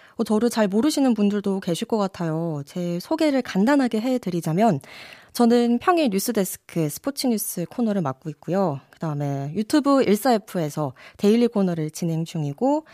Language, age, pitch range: Korean, 20-39, 185-260 Hz